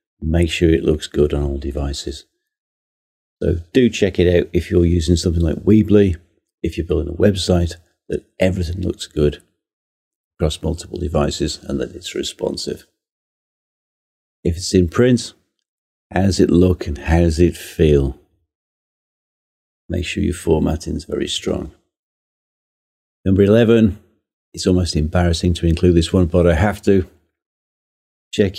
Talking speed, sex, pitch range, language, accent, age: 145 wpm, male, 80-95 Hz, English, British, 40-59